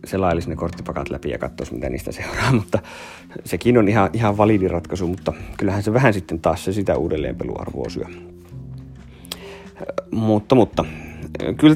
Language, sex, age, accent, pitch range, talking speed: Finnish, male, 30-49, native, 85-105 Hz, 145 wpm